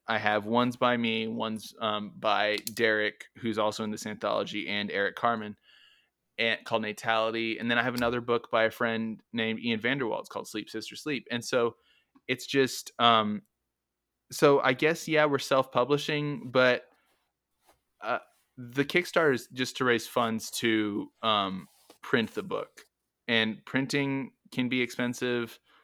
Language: English